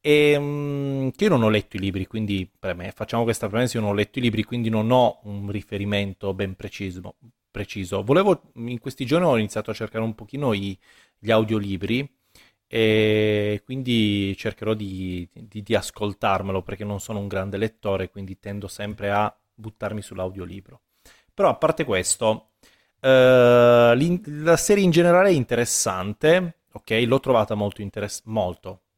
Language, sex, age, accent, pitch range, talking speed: Italian, male, 30-49, native, 100-135 Hz, 150 wpm